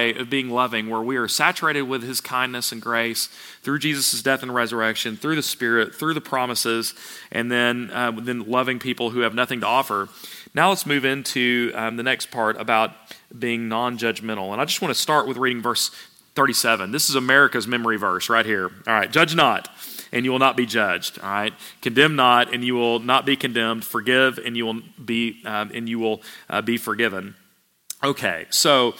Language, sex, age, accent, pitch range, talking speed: English, male, 40-59, American, 120-145 Hz, 200 wpm